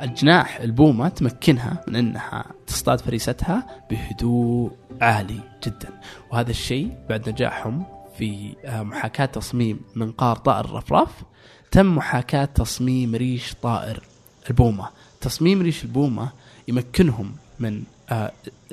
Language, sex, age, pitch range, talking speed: Arabic, male, 20-39, 115-140 Hz, 100 wpm